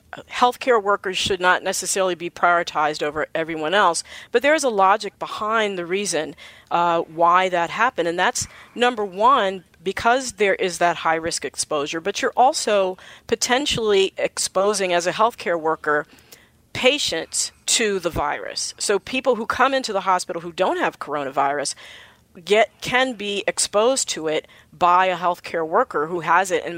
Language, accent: English, American